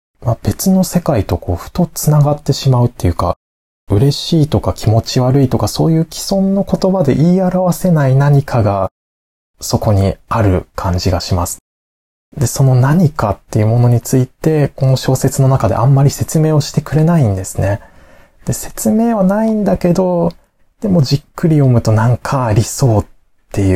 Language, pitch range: Japanese, 95-145 Hz